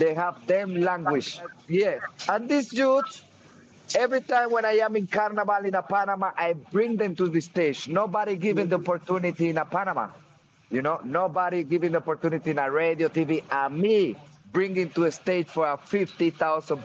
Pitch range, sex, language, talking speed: 155-190 Hz, male, English, 175 wpm